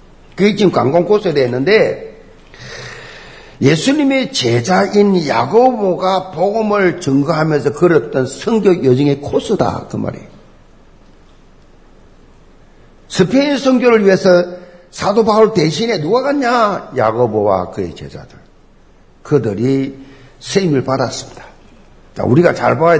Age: 50-69